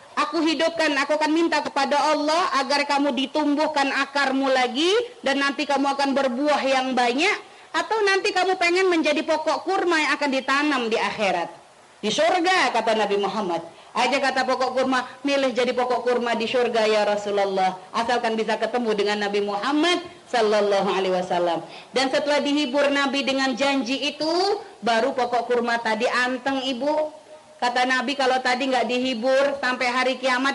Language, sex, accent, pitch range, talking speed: Indonesian, female, native, 245-355 Hz, 155 wpm